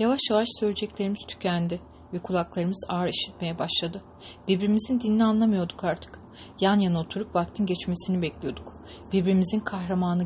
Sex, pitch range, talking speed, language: female, 170-200 Hz, 125 wpm, English